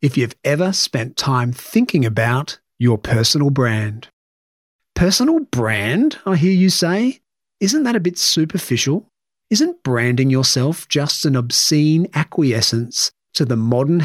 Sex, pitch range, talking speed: male, 125-170 Hz, 130 wpm